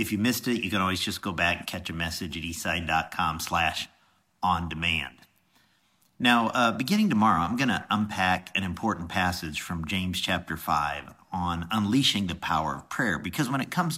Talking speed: 170 wpm